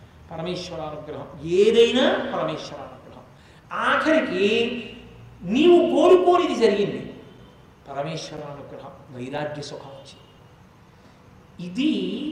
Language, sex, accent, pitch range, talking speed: Telugu, male, native, 185-235 Hz, 70 wpm